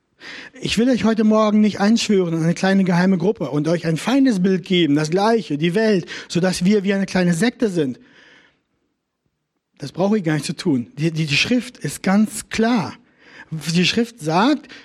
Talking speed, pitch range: 185 wpm, 175-225 Hz